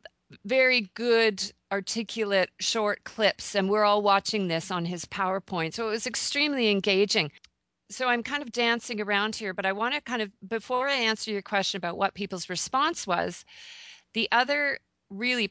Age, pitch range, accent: 40-59, 185-235 Hz, American